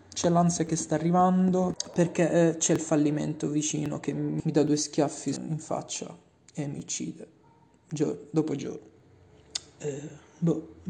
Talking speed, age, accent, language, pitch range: 140 wpm, 30-49, native, Italian, 155-185 Hz